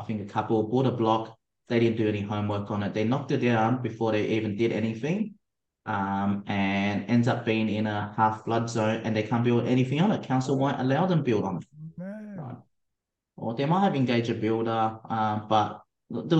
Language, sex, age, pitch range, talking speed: English, male, 30-49, 110-135 Hz, 210 wpm